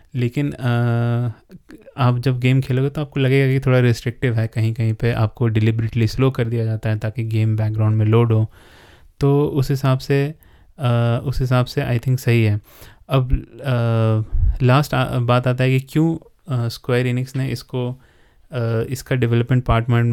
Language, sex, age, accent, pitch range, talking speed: Hindi, male, 20-39, native, 115-130 Hz, 170 wpm